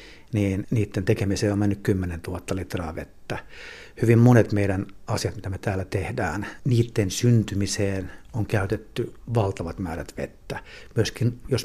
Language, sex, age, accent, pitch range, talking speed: Finnish, male, 60-79, native, 95-115 Hz, 135 wpm